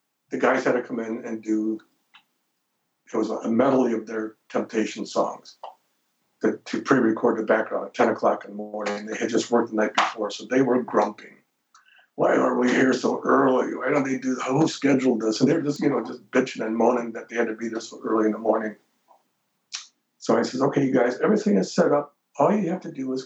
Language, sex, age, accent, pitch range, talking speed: English, male, 60-79, American, 110-130 Hz, 225 wpm